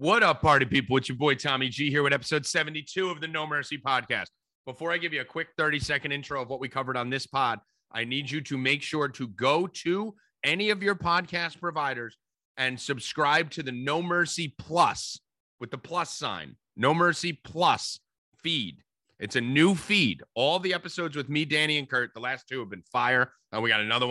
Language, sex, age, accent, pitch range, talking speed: English, male, 30-49, American, 130-160 Hz, 210 wpm